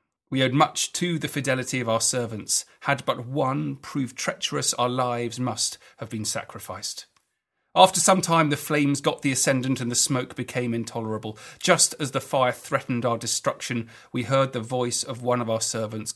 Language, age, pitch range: English, 40-59, 120-150 Hz